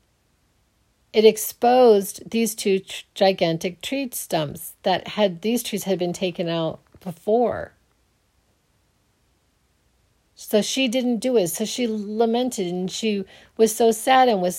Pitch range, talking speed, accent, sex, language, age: 175-230 Hz, 130 wpm, American, female, English, 40-59